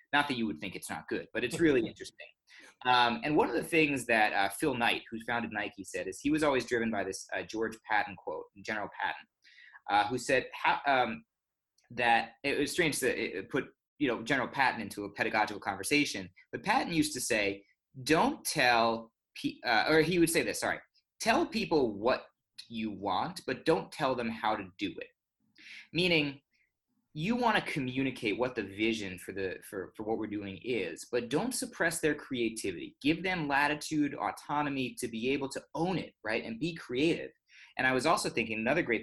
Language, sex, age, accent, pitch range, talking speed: English, male, 20-39, American, 115-160 Hz, 195 wpm